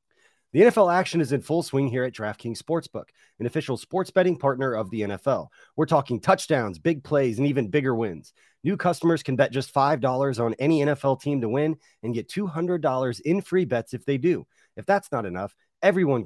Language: English